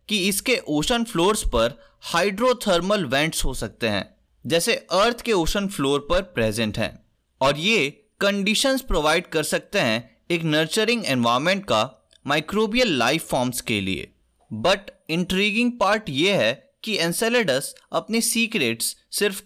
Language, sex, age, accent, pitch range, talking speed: Hindi, male, 20-39, native, 140-220 Hz, 135 wpm